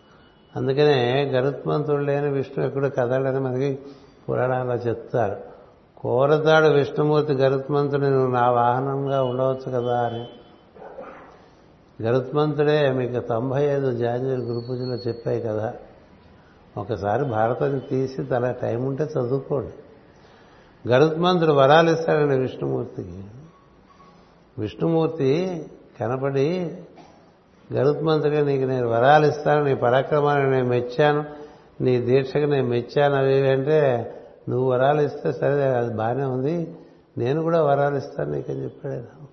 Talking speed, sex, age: 100 wpm, male, 60-79